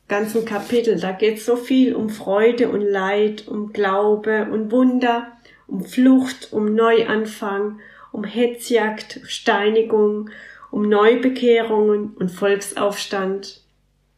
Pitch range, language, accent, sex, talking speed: 195-225 Hz, German, German, female, 105 wpm